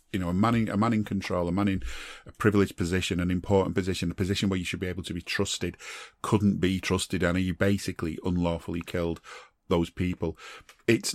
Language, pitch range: English, 90-110 Hz